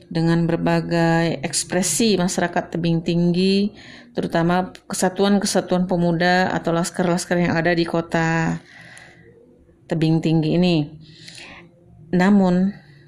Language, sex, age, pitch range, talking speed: Indonesian, female, 40-59, 170-200 Hz, 85 wpm